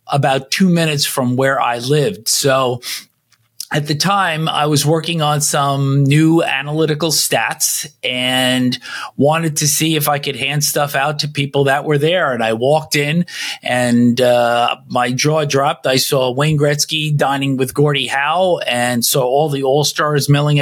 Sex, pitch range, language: male, 135-165 Hz, English